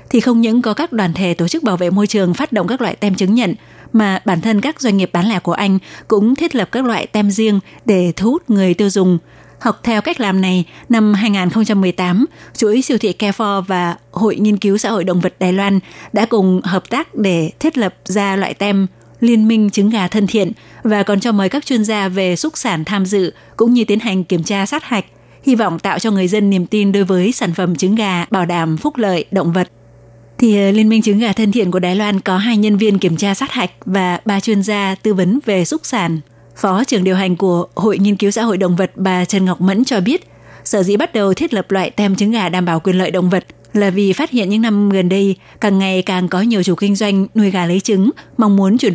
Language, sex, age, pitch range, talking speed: Vietnamese, female, 20-39, 185-220 Hz, 250 wpm